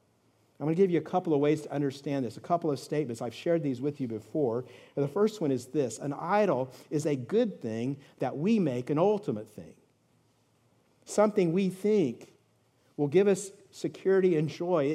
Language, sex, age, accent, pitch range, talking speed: English, male, 50-69, American, 130-165 Hz, 195 wpm